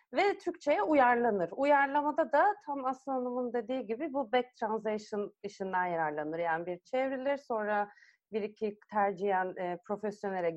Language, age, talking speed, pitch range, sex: Turkish, 30-49, 135 wpm, 205-280 Hz, female